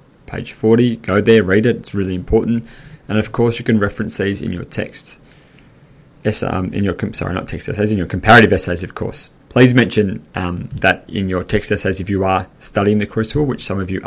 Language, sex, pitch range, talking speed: English, male, 95-125 Hz, 220 wpm